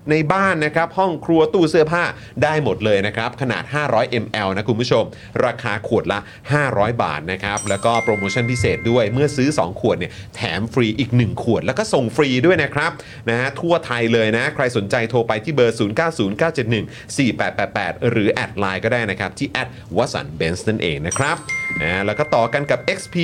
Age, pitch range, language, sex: 30-49, 110-155 Hz, Thai, male